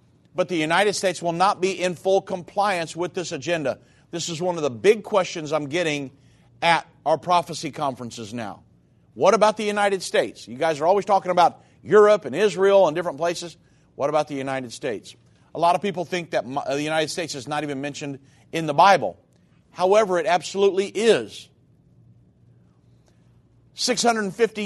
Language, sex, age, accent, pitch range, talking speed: English, male, 50-69, American, 145-195 Hz, 170 wpm